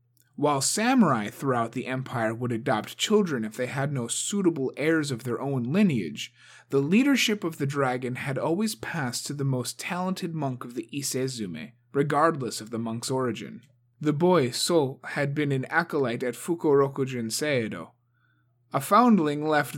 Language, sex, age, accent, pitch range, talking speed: English, male, 30-49, American, 120-155 Hz, 160 wpm